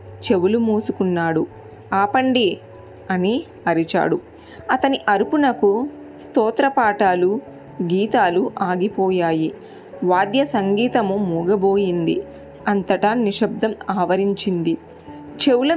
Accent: native